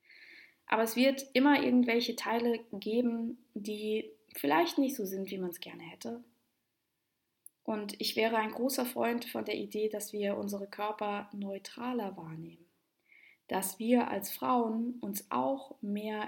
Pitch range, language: 195-245 Hz, German